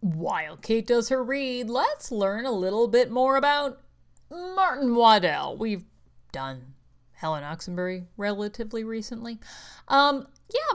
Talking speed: 125 wpm